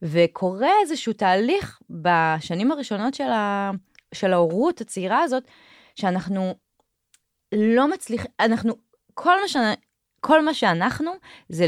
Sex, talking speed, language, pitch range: female, 105 wpm, Hebrew, 170-250 Hz